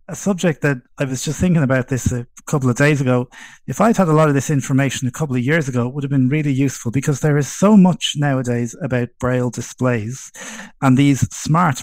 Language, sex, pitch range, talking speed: English, male, 125-145 Hz, 225 wpm